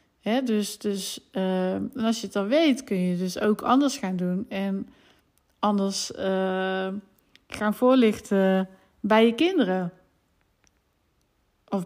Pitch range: 195-260 Hz